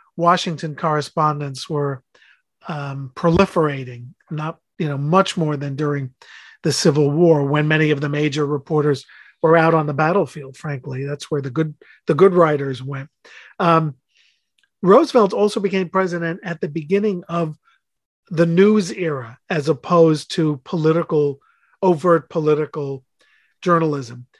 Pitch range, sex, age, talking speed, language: 150-175 Hz, male, 40-59, 135 wpm, English